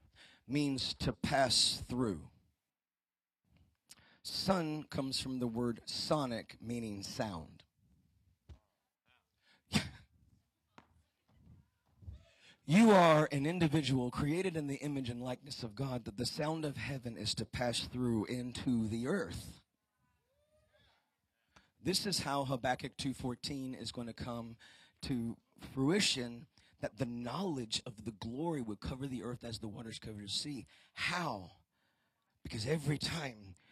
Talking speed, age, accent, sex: 120 wpm, 40-59, American, male